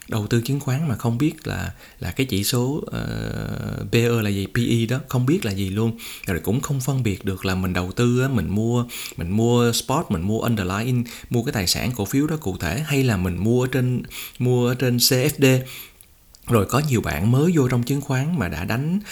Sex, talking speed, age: male, 220 wpm, 20-39